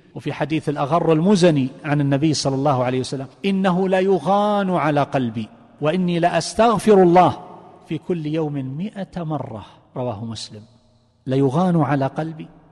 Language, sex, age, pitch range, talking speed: Arabic, male, 50-69, 140-185 Hz, 135 wpm